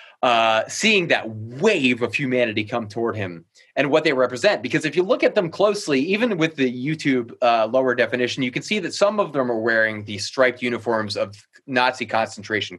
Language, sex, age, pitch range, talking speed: English, male, 30-49, 110-145 Hz, 195 wpm